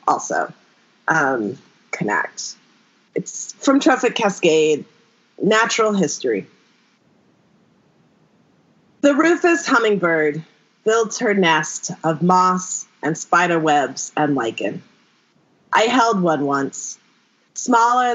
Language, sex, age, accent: English, female, 30-49, American